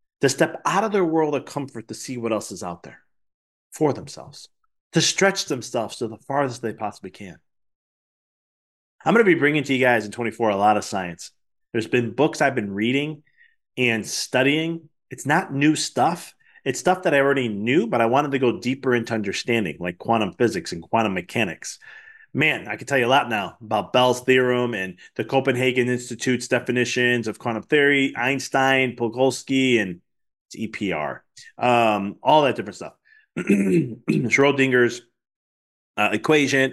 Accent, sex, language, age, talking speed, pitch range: American, male, English, 30-49, 170 wpm, 105-135 Hz